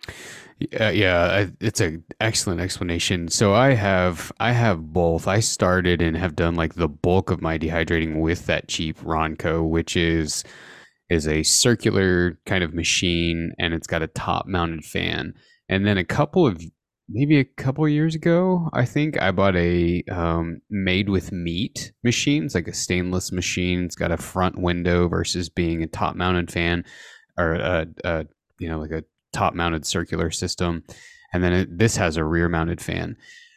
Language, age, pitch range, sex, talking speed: English, 20-39, 85-105 Hz, male, 175 wpm